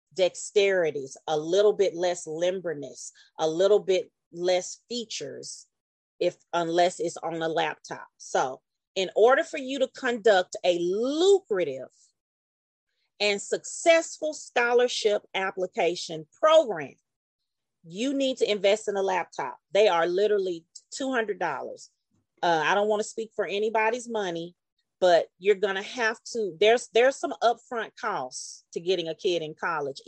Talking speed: 140 wpm